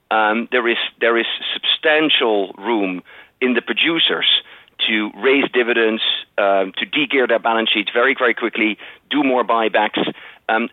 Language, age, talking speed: English, 40-59, 145 wpm